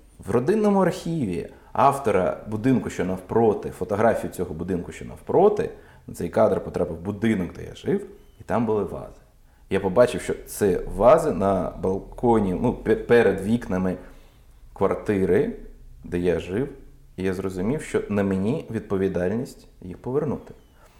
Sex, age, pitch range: male, 30-49, 95-120 Hz